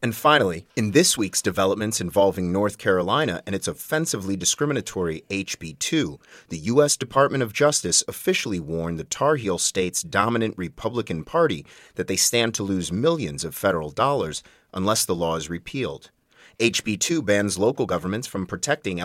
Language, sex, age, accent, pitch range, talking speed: English, male, 30-49, American, 90-125 Hz, 150 wpm